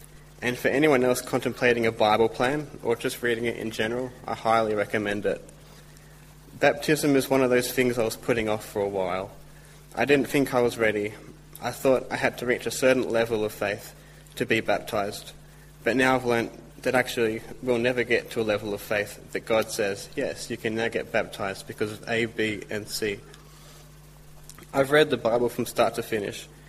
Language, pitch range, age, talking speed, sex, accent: English, 115-135 Hz, 20-39, 200 wpm, male, Australian